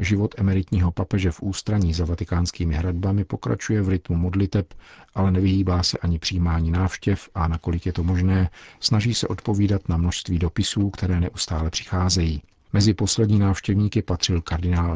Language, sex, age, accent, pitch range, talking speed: Czech, male, 50-69, native, 85-100 Hz, 150 wpm